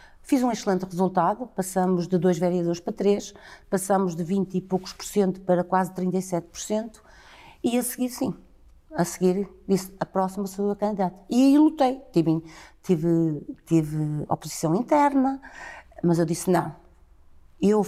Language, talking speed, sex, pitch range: Portuguese, 160 wpm, female, 175-225 Hz